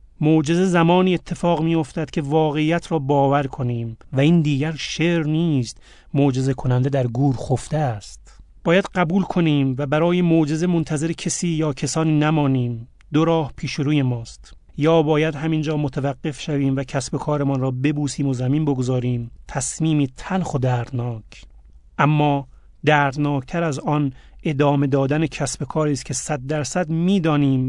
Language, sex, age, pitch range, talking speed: Persian, male, 30-49, 130-160 Hz, 145 wpm